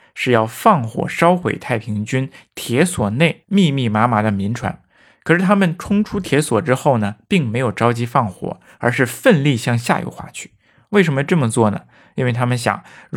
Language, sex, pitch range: Chinese, male, 110-150 Hz